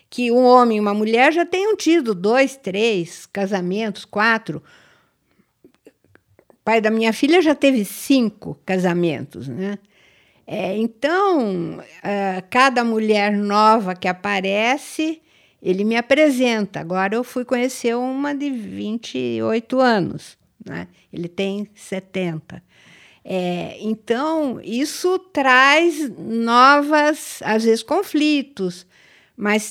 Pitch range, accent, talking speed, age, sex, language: 195-270 Hz, Brazilian, 105 wpm, 50-69, female, Portuguese